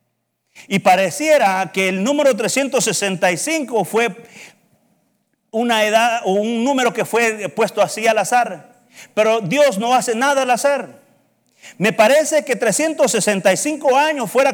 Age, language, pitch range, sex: 50-69, Spanish, 195-270 Hz, male